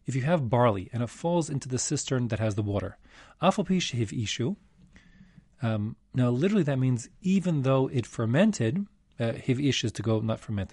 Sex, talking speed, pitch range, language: male, 175 wpm, 110-145 Hz, English